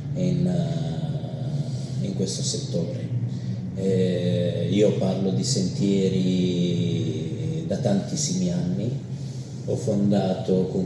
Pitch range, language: 100-135 Hz, Italian